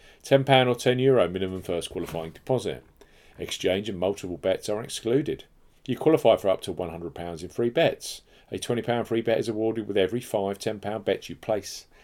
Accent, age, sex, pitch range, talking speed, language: British, 40-59, male, 100-135 Hz, 180 wpm, English